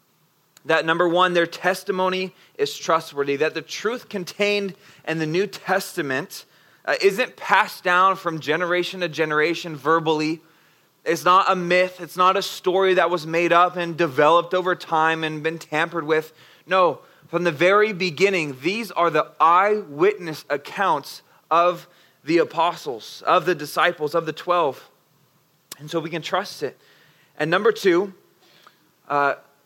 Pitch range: 155-180 Hz